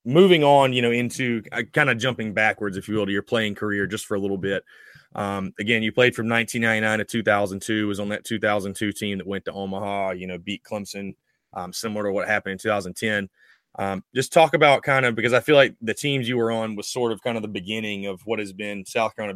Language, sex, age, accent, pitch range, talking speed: English, male, 20-39, American, 100-120 Hz, 240 wpm